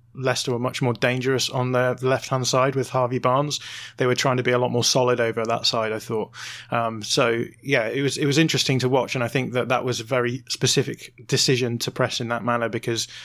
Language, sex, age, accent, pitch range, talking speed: English, male, 20-39, British, 120-130 Hz, 235 wpm